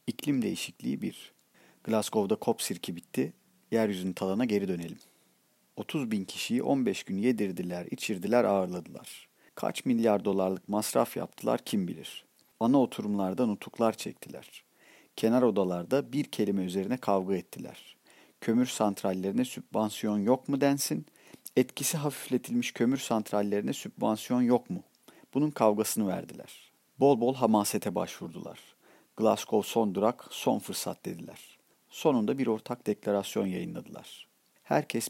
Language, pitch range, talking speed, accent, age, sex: Turkish, 100-125 Hz, 120 wpm, native, 50-69, male